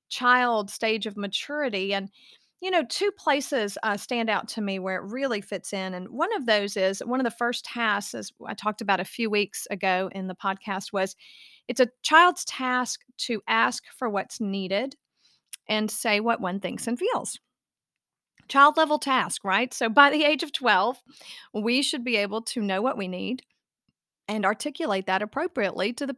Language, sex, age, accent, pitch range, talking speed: English, female, 40-59, American, 195-250 Hz, 190 wpm